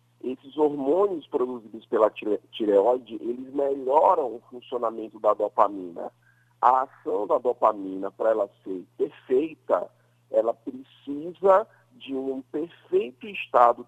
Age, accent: 50-69, Brazilian